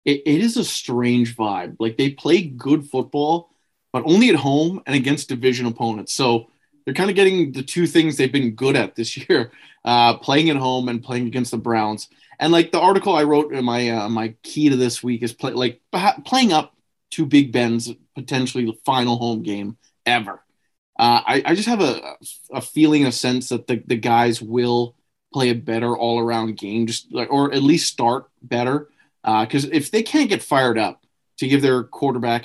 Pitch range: 115-150 Hz